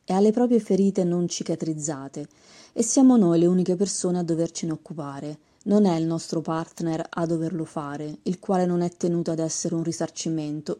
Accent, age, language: native, 30-49, Italian